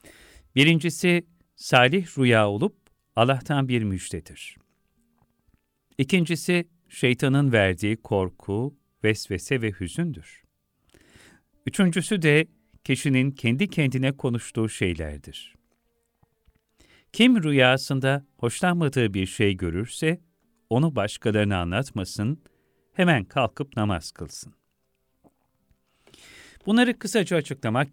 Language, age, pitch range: Turkish, 50-69, 95-140 Hz